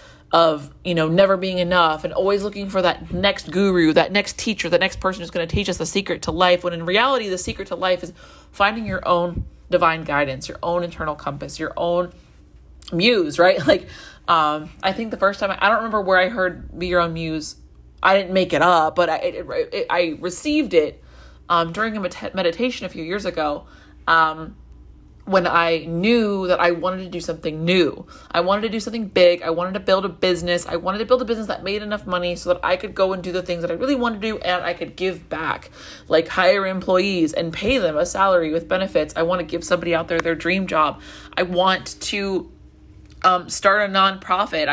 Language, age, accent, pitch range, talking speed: English, 30-49, American, 165-195 Hz, 220 wpm